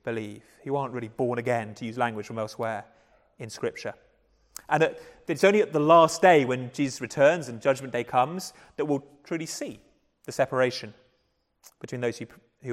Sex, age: male, 30-49